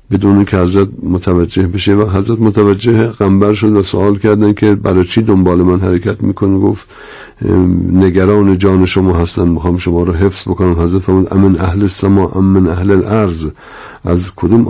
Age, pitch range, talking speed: 60-79, 95-105 Hz, 160 wpm